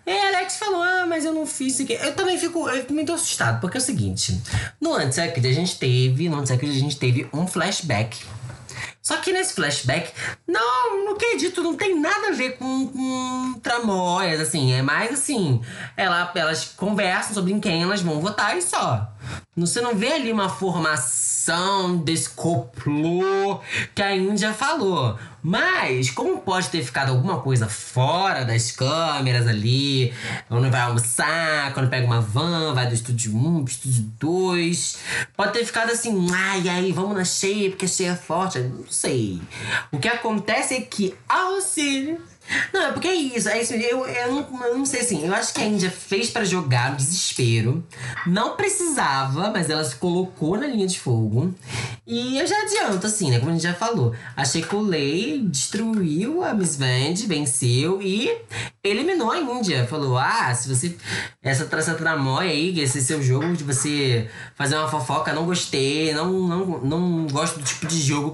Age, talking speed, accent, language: 20-39, 185 wpm, Brazilian, Portuguese